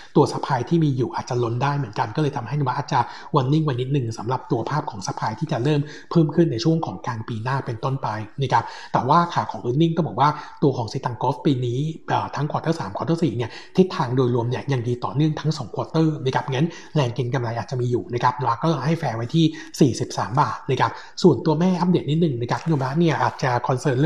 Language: Thai